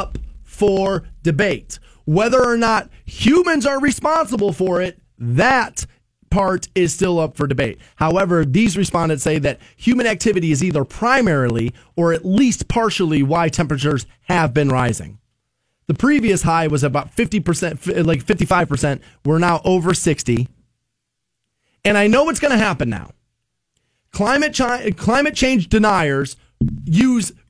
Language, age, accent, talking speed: English, 30-49, American, 135 wpm